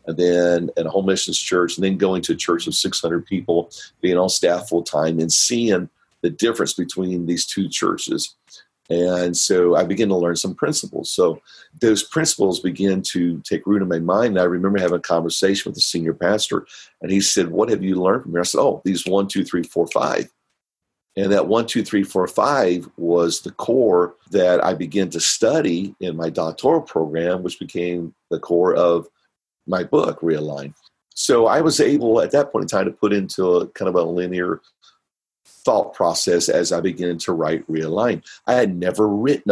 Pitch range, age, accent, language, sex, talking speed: 85-95 Hz, 50-69, American, English, male, 200 wpm